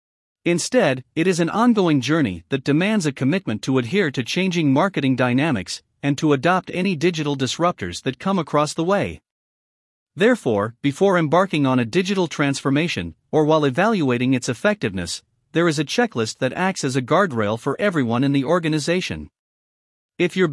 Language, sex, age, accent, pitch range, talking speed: English, male, 50-69, American, 130-180 Hz, 160 wpm